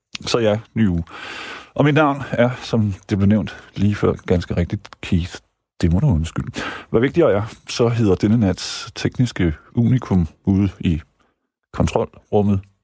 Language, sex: Danish, male